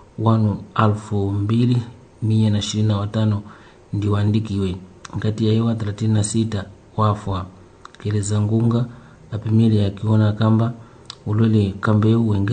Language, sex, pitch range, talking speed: Portuguese, male, 105-115 Hz, 100 wpm